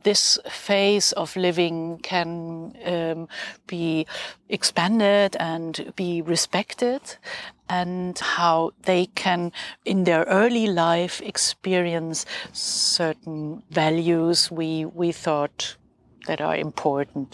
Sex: female